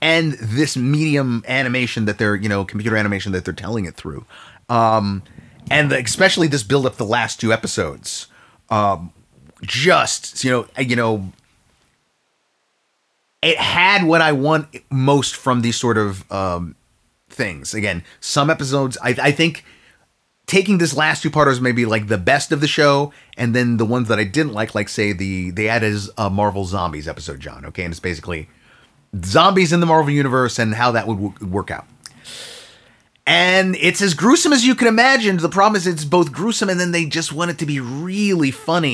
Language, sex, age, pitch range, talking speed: English, male, 30-49, 110-165 Hz, 185 wpm